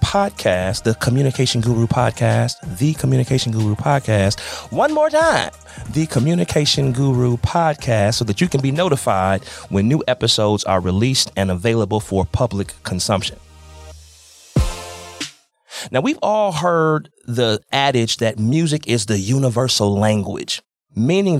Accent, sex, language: American, male, English